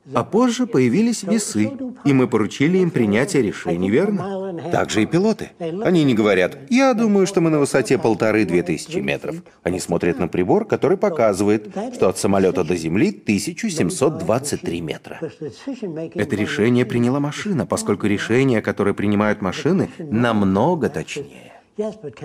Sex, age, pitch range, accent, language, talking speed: male, 30-49, 110-175 Hz, native, Russian, 135 wpm